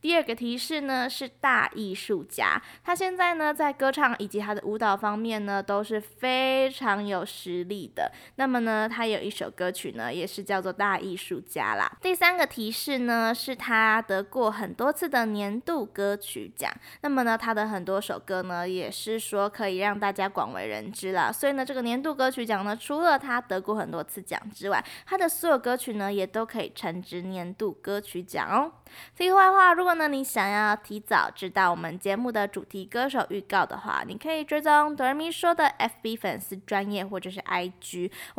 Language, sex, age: Chinese, female, 20-39